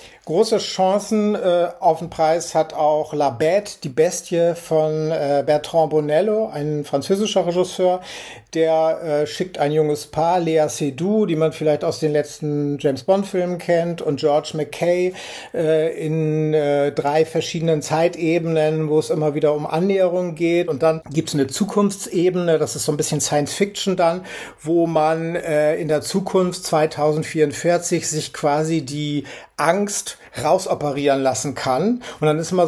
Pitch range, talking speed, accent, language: 150-170 Hz, 150 wpm, German, German